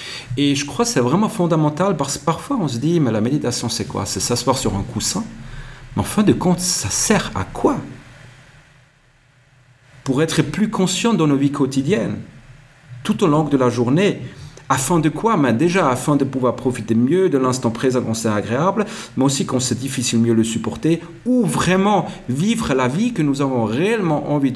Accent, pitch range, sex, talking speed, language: French, 125-160 Hz, male, 195 wpm, French